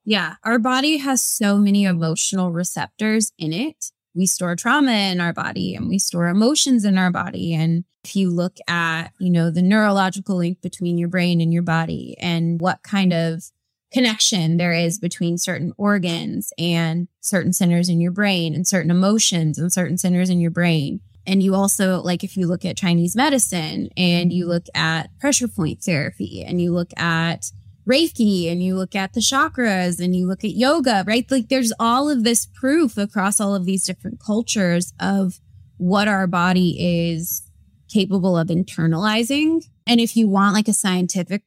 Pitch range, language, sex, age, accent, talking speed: 175-210 Hz, English, female, 20-39, American, 180 wpm